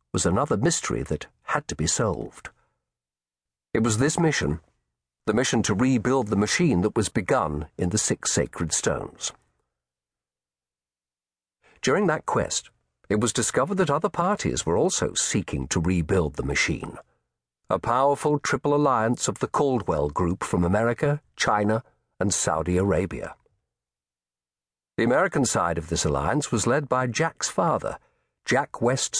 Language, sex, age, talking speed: English, male, 50-69, 140 wpm